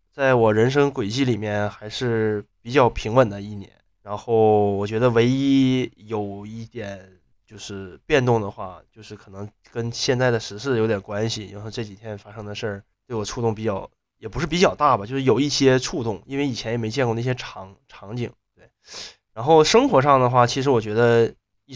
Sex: male